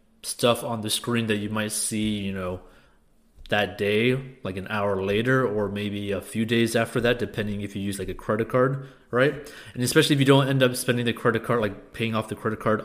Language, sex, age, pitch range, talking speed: English, male, 30-49, 105-125 Hz, 230 wpm